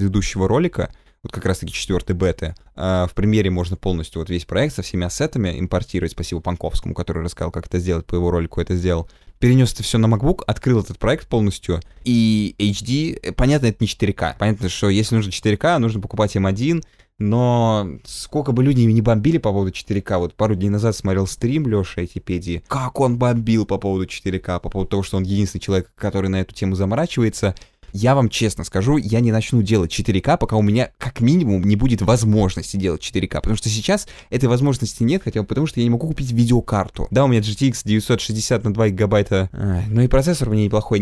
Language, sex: Russian, male